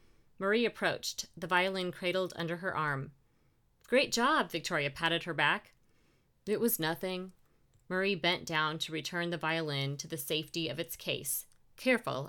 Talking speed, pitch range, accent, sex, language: 150 wpm, 150-200 Hz, American, female, English